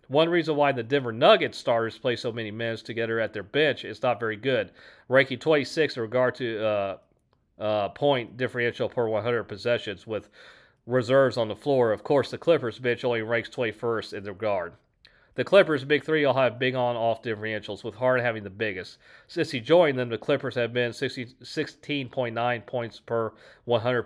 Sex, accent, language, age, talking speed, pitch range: male, American, English, 40-59, 185 wpm, 115-130 Hz